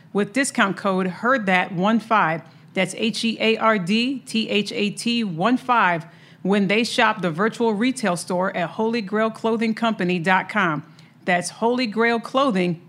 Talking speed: 90 wpm